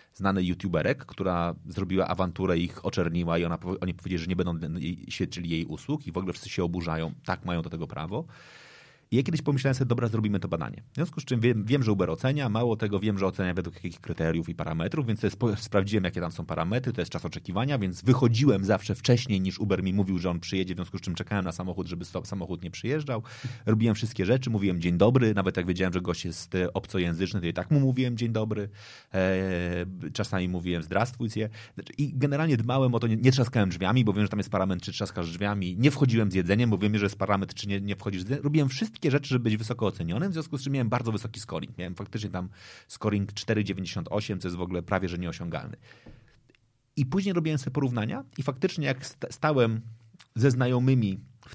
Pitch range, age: 95-125 Hz, 30-49